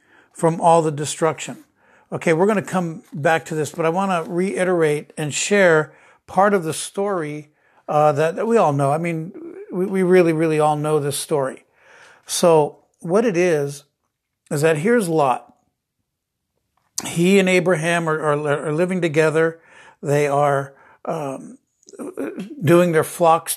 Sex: male